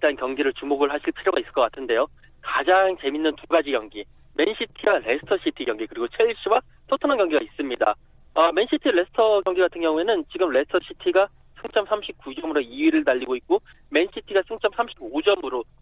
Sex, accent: male, native